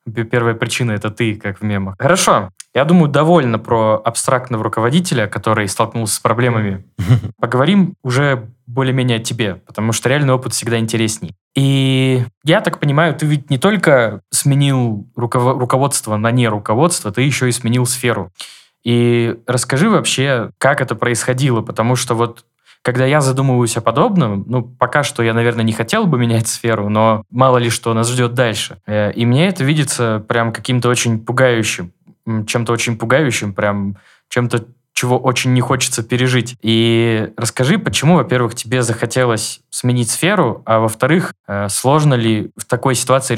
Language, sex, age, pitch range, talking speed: Russian, male, 20-39, 115-130 Hz, 150 wpm